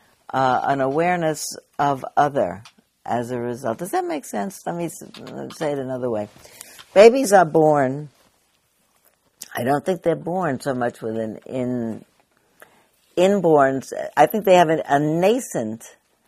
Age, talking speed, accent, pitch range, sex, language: 60-79, 145 wpm, American, 120-160 Hz, female, English